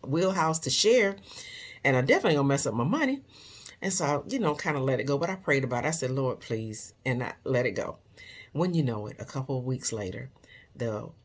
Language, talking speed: English, 240 wpm